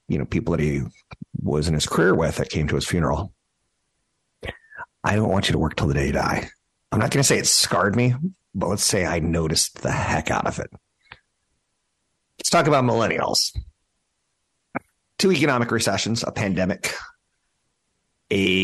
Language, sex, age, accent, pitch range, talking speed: English, male, 50-69, American, 80-100 Hz, 175 wpm